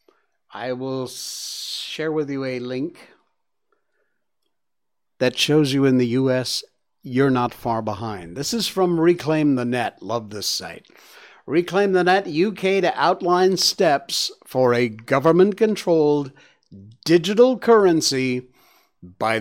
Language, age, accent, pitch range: English, 50-69, American, 125-170 Hz